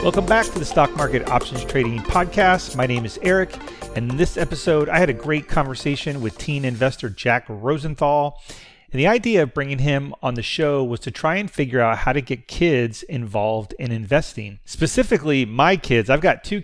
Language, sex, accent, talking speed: English, male, American, 200 wpm